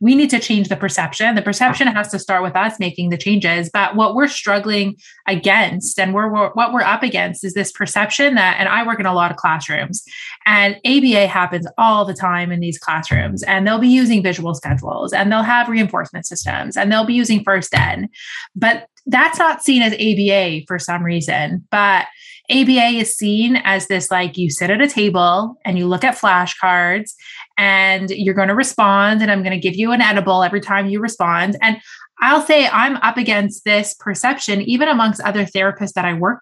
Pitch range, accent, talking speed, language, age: 190-240 Hz, American, 205 wpm, English, 20-39